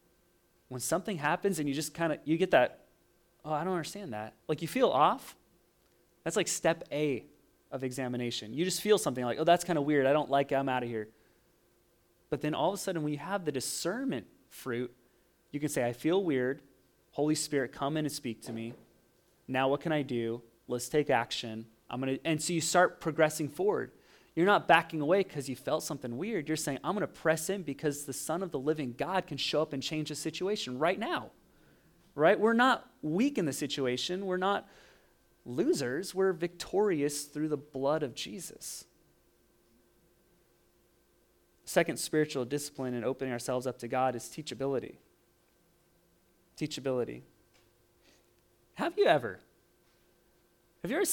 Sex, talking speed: male, 180 wpm